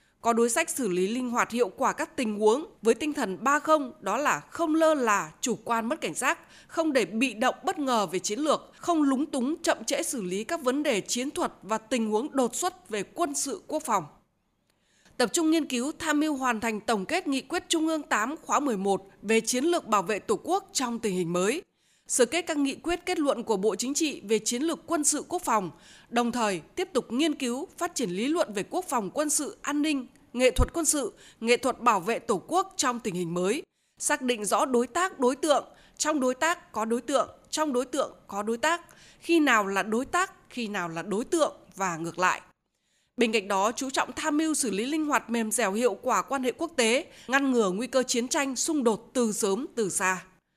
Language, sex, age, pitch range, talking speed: Vietnamese, female, 20-39, 220-310 Hz, 235 wpm